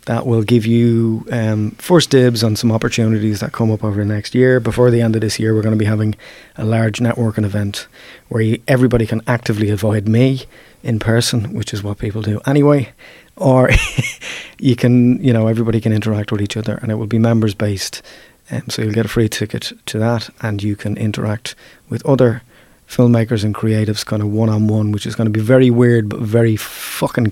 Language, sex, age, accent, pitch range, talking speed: English, male, 30-49, Irish, 105-120 Hz, 210 wpm